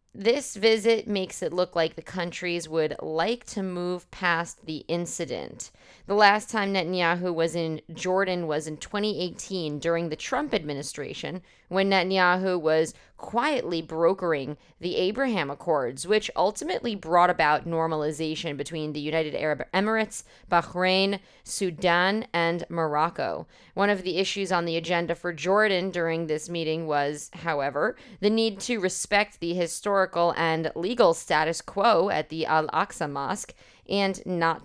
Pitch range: 160-195 Hz